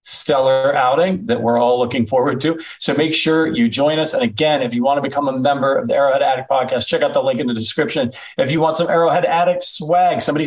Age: 40-59